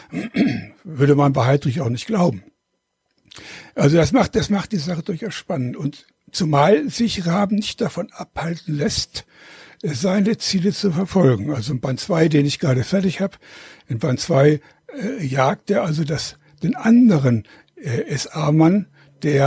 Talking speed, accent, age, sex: 155 wpm, German, 60-79, male